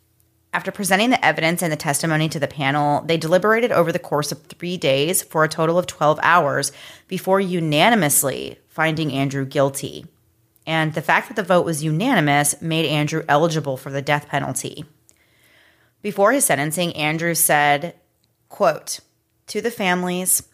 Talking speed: 155 wpm